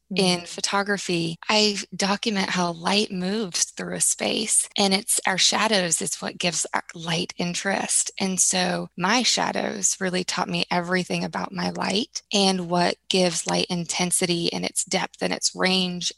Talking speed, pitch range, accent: 150 wpm, 175-195 Hz, American